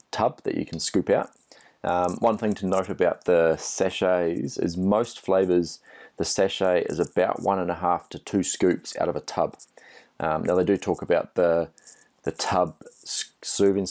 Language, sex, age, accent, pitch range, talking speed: English, male, 30-49, Australian, 85-100 Hz, 180 wpm